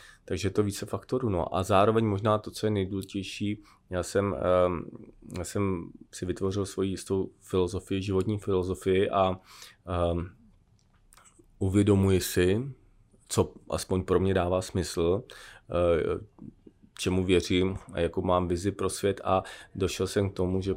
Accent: native